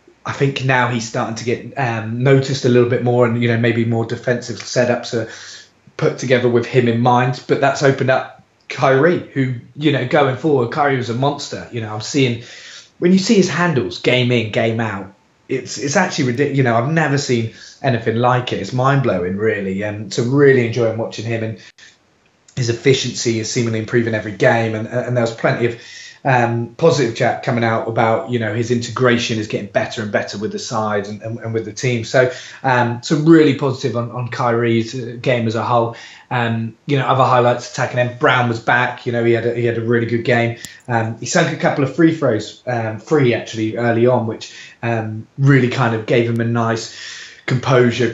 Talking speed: 210 wpm